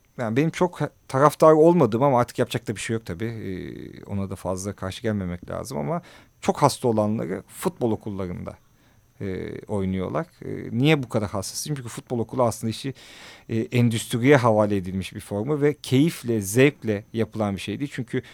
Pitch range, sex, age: 105-130 Hz, male, 40-59